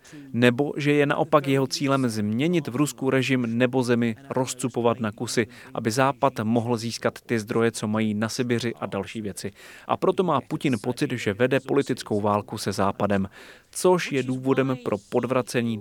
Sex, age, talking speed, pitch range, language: male, 30-49, 165 wpm, 115-145 Hz, Czech